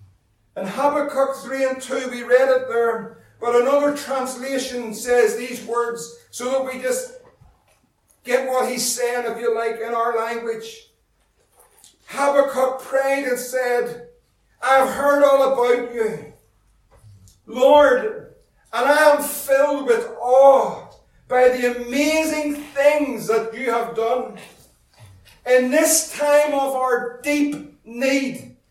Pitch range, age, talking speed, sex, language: 240-285 Hz, 50-69, 125 wpm, male, English